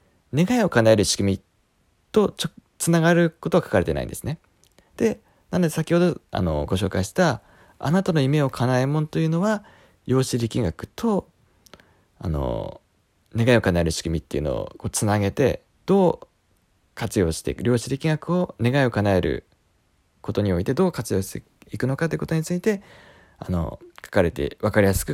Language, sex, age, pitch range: Japanese, male, 20-39, 95-140 Hz